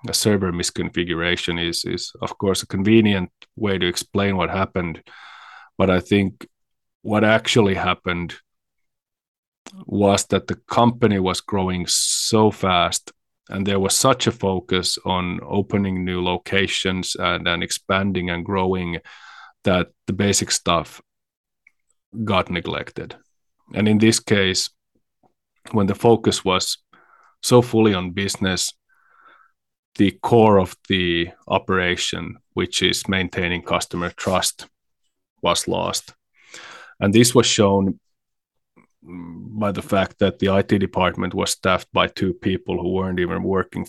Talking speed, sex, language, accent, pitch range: 125 wpm, male, English, Finnish, 90-105 Hz